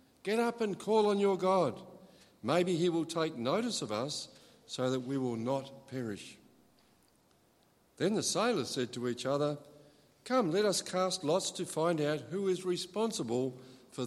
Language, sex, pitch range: English, male, 140-190 Hz